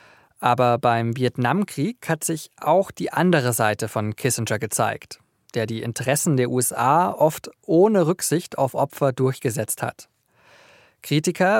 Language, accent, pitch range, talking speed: German, German, 120-150 Hz, 130 wpm